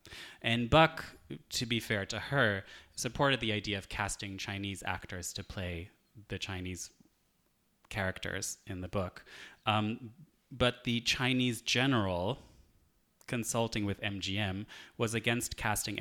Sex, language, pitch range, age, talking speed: male, English, 95-115 Hz, 20-39, 125 wpm